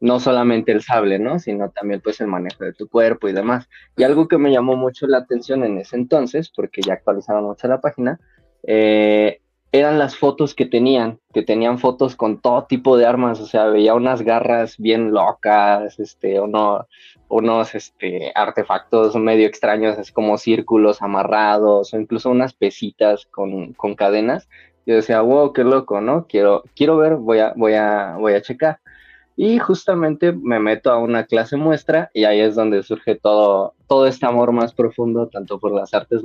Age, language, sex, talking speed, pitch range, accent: 20-39, Spanish, male, 180 wpm, 105-130 Hz, Mexican